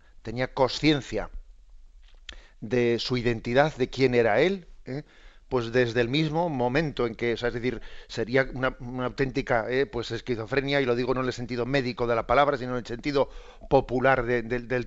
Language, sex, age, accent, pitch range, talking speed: Spanish, male, 40-59, Spanish, 115-135 Hz, 160 wpm